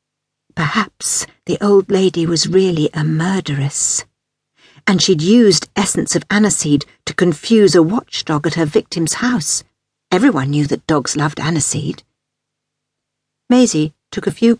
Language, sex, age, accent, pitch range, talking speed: English, female, 60-79, British, 155-210 Hz, 130 wpm